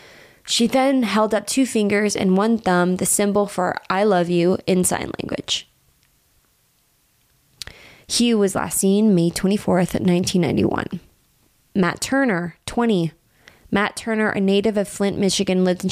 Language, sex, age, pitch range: English, female, 20-39, 180-200 Hz